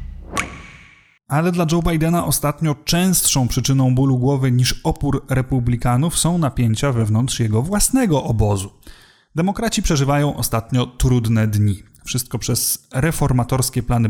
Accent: native